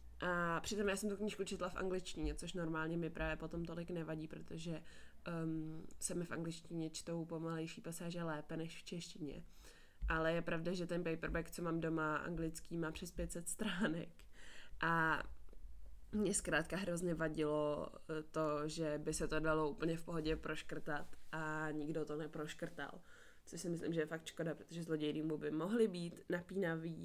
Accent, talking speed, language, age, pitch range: native, 165 wpm, Czech, 20-39, 155-175 Hz